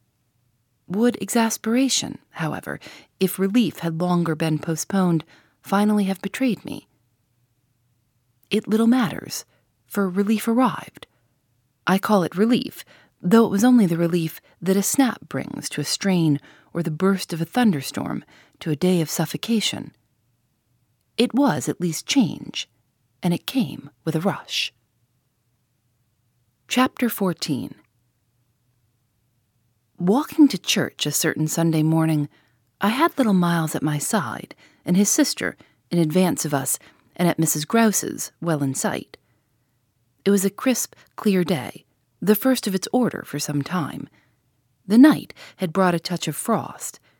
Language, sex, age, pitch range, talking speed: English, female, 40-59, 125-200 Hz, 140 wpm